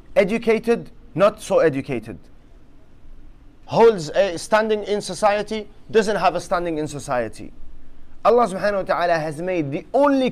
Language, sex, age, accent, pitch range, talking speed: English, male, 30-49, Lebanese, 150-200 Hz, 135 wpm